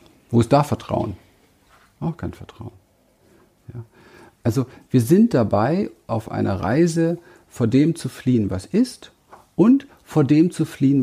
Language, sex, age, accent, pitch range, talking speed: German, male, 50-69, German, 105-170 Hz, 135 wpm